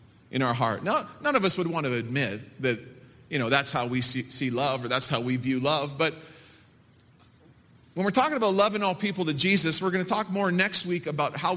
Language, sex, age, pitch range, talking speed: English, male, 40-59, 130-185 Hz, 230 wpm